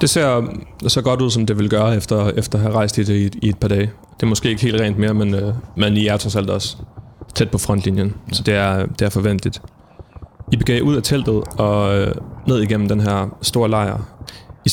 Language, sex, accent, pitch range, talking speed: Danish, male, native, 100-115 Hz, 240 wpm